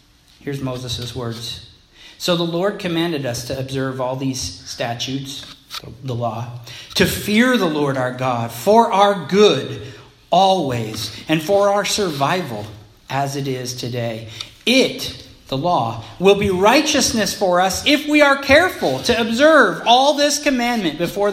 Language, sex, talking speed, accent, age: English, male, 145 wpm, American, 40-59